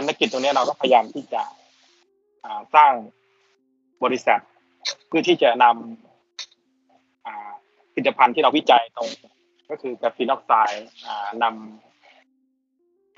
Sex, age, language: male, 20-39, Thai